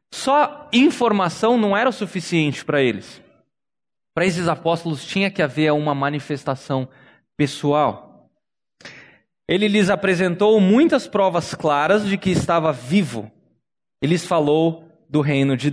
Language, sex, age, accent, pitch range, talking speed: Portuguese, male, 20-39, Brazilian, 155-215 Hz, 125 wpm